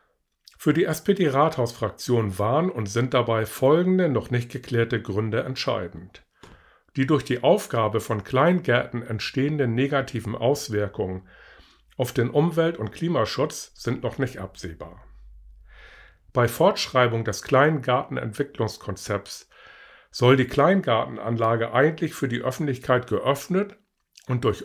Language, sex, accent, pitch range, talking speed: German, male, German, 110-140 Hz, 110 wpm